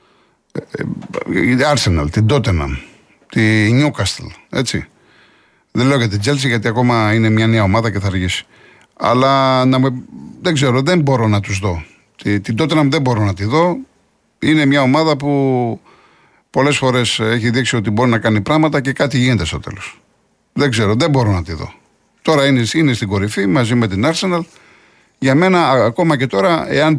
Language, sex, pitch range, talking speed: Greek, male, 110-145 Hz, 175 wpm